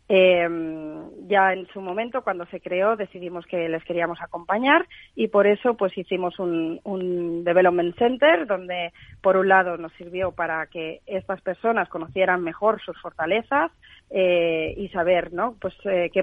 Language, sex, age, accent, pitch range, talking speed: Spanish, female, 30-49, Spanish, 175-200 Hz, 160 wpm